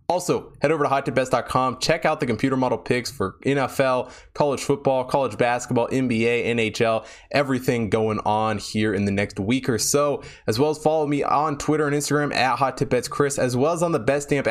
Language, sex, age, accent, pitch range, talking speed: English, male, 20-39, American, 105-140 Hz, 195 wpm